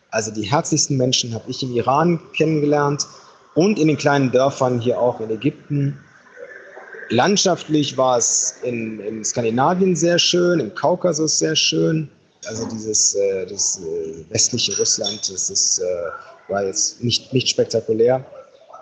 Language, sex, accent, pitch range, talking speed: German, male, German, 125-155 Hz, 140 wpm